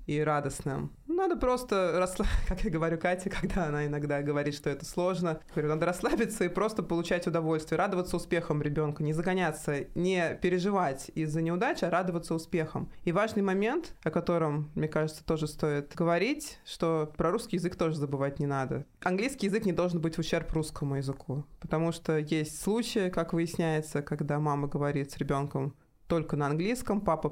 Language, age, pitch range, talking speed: Russian, 20-39, 150-175 Hz, 170 wpm